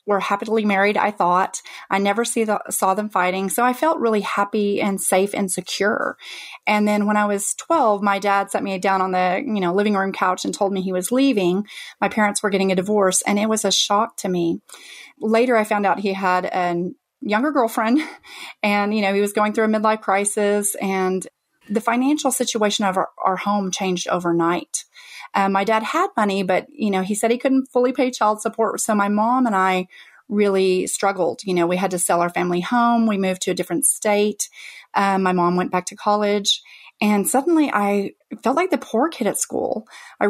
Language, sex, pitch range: English, female, 190-230 Hz